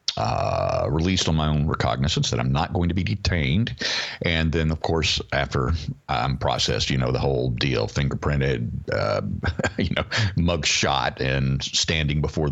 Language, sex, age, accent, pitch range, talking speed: English, male, 50-69, American, 70-90 Hz, 165 wpm